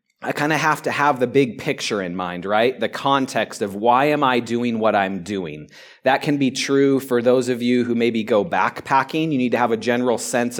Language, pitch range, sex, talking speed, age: English, 115-140 Hz, male, 230 wpm, 30-49